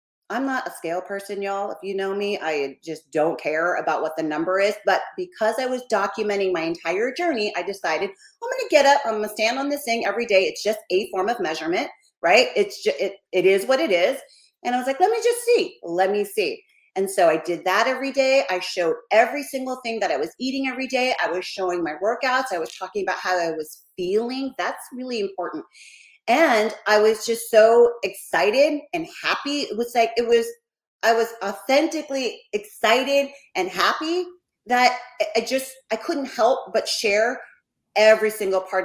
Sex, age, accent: female, 30-49, American